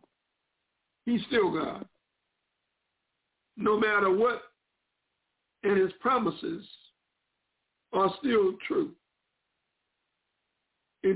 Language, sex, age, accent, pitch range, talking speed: English, male, 60-79, American, 205-245 Hz, 70 wpm